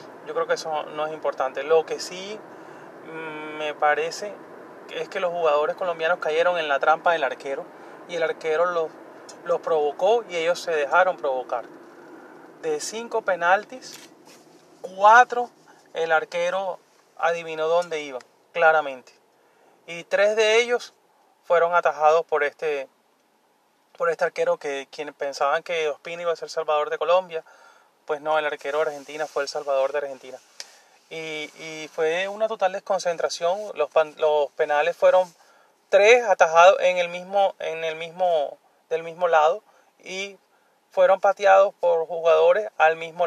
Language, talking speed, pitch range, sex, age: English, 145 wpm, 150-185 Hz, male, 30-49